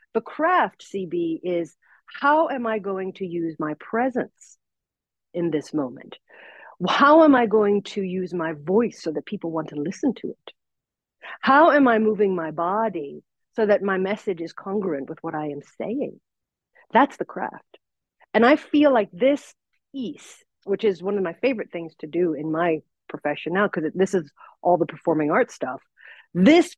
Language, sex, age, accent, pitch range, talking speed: English, female, 50-69, American, 175-245 Hz, 175 wpm